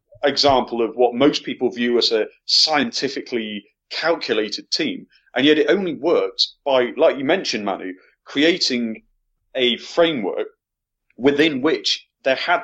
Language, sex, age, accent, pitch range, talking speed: English, male, 30-49, British, 115-165 Hz, 135 wpm